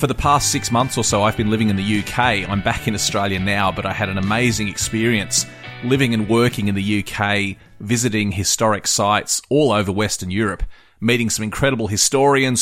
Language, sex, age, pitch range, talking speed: English, male, 30-49, 95-115 Hz, 195 wpm